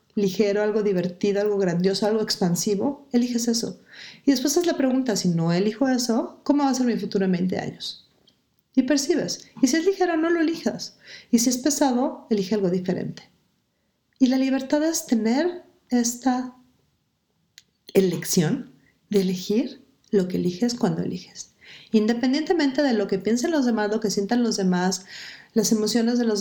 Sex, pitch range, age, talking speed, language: female, 195-245 Hz, 40-59, 165 wpm, Spanish